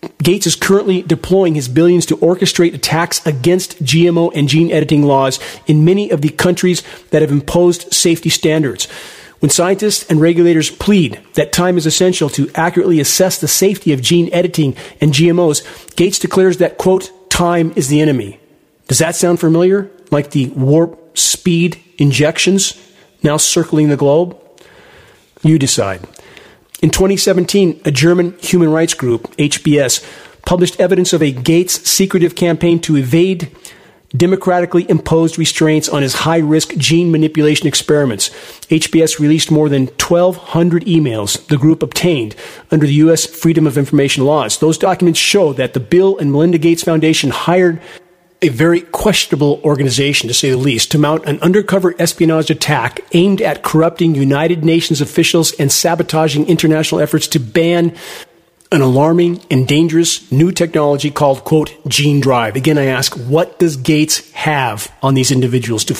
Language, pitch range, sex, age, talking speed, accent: English, 145-175 Hz, male, 40-59, 150 wpm, American